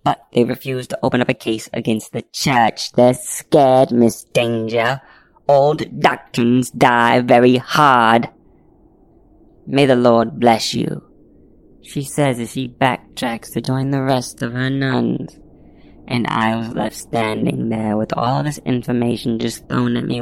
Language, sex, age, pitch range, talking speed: English, female, 20-39, 120-140 Hz, 150 wpm